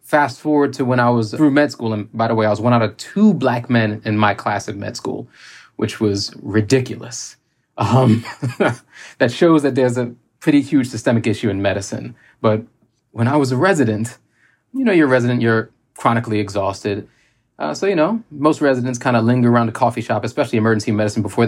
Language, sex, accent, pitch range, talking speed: English, male, American, 110-130 Hz, 205 wpm